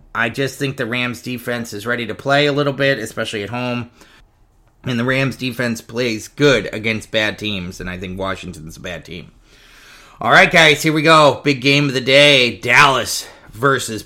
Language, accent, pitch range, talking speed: English, American, 110-140 Hz, 190 wpm